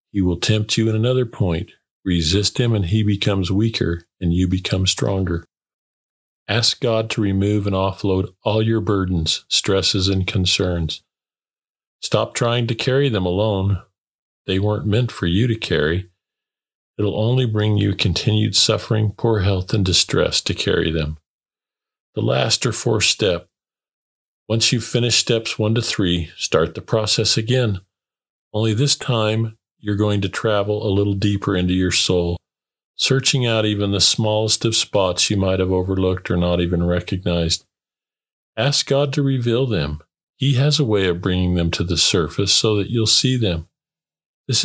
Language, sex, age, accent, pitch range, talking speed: English, male, 50-69, American, 90-115 Hz, 160 wpm